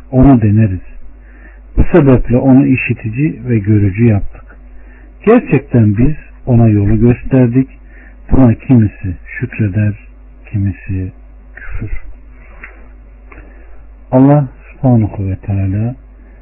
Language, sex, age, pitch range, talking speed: Turkish, male, 60-79, 100-130 Hz, 85 wpm